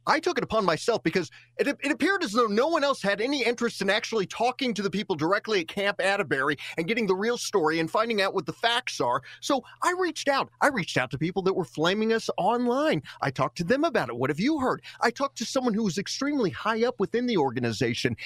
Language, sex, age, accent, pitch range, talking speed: English, male, 30-49, American, 155-245 Hz, 245 wpm